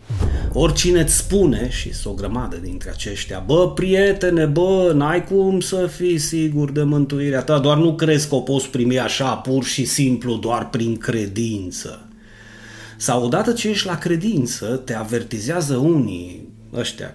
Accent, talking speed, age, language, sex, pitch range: native, 150 wpm, 30-49, Romanian, male, 110-155 Hz